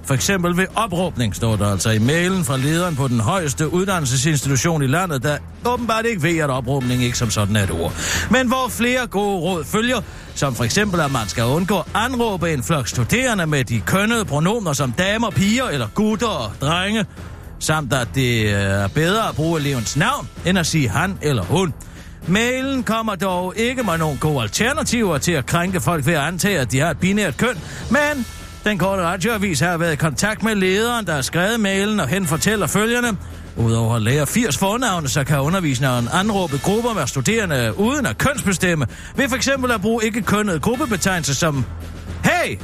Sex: male